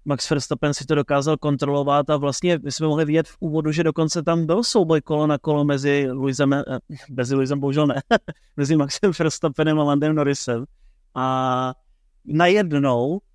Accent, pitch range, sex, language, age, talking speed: native, 145-160 Hz, male, Czech, 30-49, 155 wpm